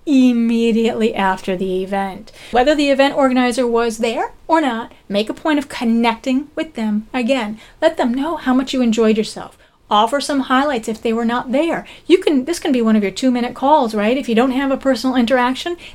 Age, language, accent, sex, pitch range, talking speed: 30-49, English, American, female, 220-275 Hz, 205 wpm